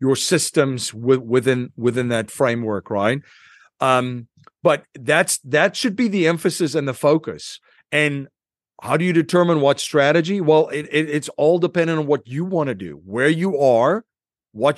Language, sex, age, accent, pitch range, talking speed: English, male, 50-69, American, 135-185 Hz, 165 wpm